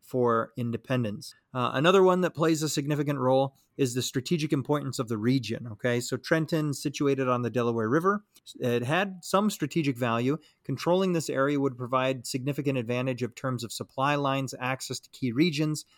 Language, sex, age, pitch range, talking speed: English, male, 30-49, 120-145 Hz, 175 wpm